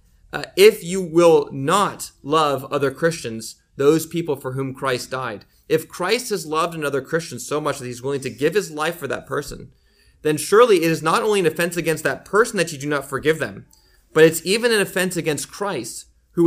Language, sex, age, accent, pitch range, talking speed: English, male, 30-49, American, 135-170 Hz, 210 wpm